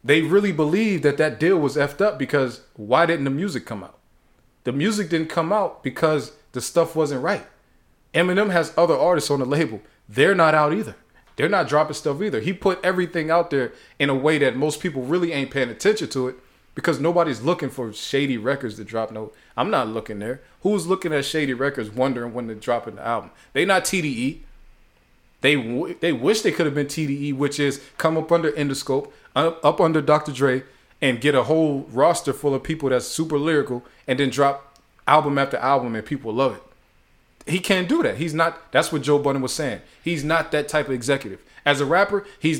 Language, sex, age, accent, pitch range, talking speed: English, male, 20-39, American, 135-160 Hz, 210 wpm